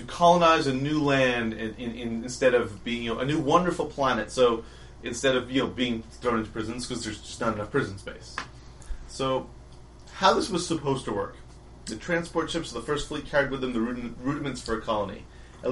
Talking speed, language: 220 wpm, English